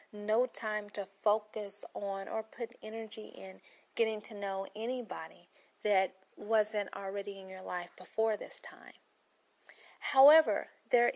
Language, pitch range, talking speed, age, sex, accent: English, 195-245 Hz, 130 wpm, 40-59, female, American